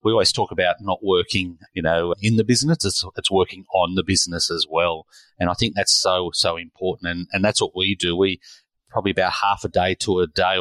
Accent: Australian